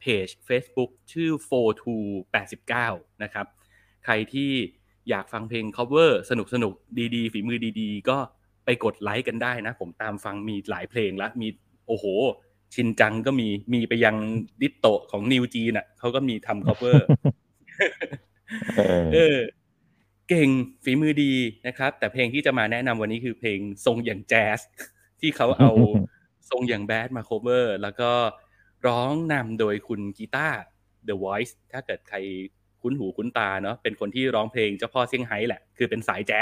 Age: 20-39